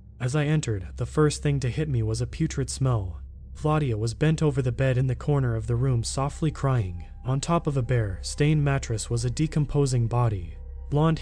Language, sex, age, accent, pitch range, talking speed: English, male, 30-49, American, 115-145 Hz, 210 wpm